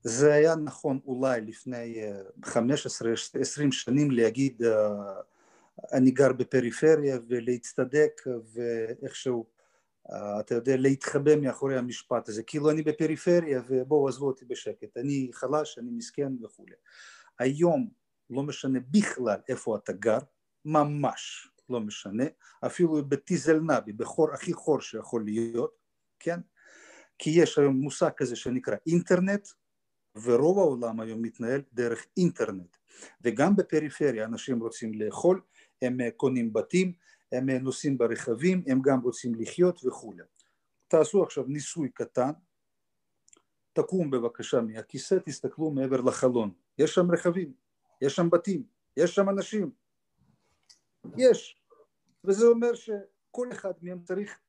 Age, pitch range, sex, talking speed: 40-59, 125-180 Hz, male, 115 wpm